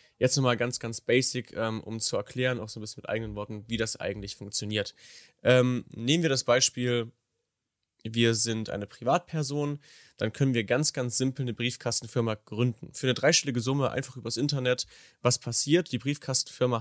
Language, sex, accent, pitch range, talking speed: German, male, German, 110-140 Hz, 170 wpm